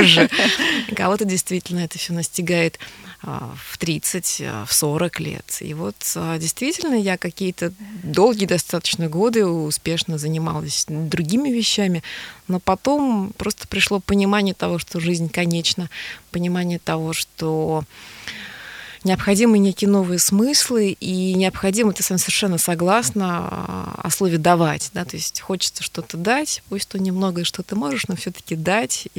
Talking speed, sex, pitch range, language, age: 130 wpm, female, 165-205 Hz, Russian, 20-39